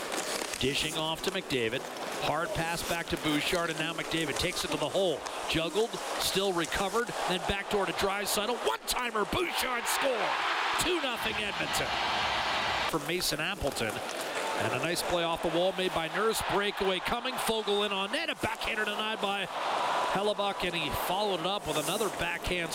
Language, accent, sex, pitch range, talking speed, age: English, American, male, 160-200 Hz, 170 wpm, 40-59